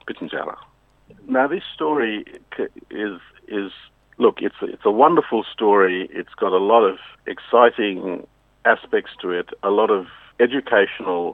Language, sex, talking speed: English, male, 125 wpm